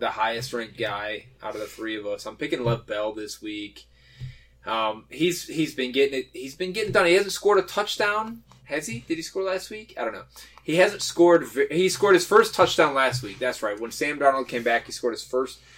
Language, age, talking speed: English, 20-39, 235 wpm